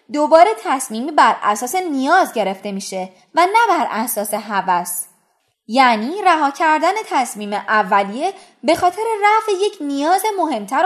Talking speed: 125 wpm